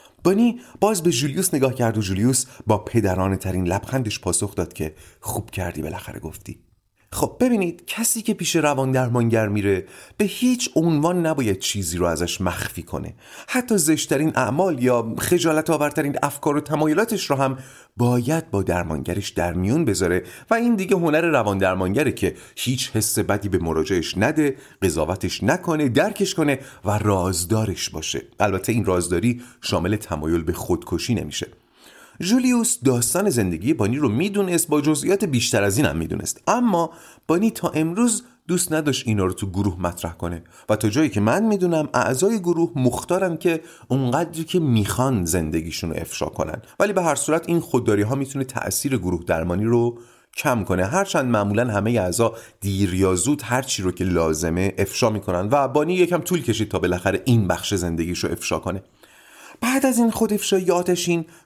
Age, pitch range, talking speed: 30-49, 100-165 Hz, 160 wpm